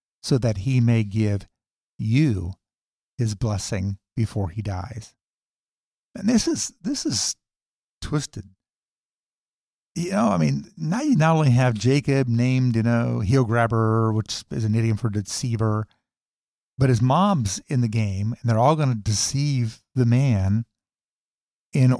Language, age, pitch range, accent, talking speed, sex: English, 50-69, 110-140 Hz, American, 145 wpm, male